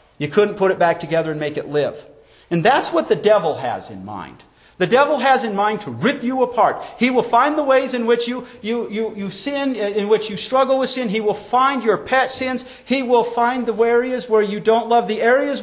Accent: American